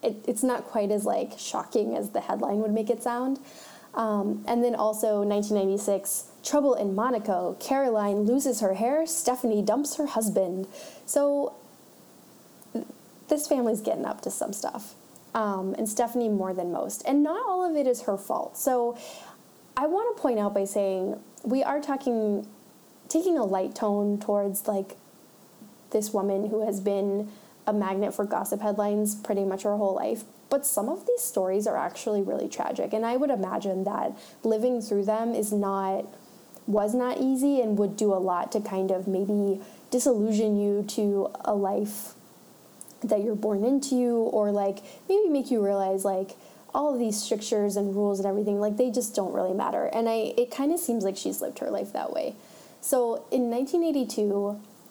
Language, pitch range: English, 205-250 Hz